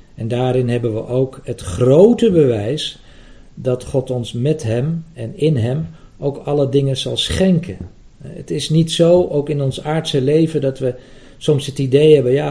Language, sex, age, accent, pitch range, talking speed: Dutch, male, 50-69, Dutch, 125-150 Hz, 180 wpm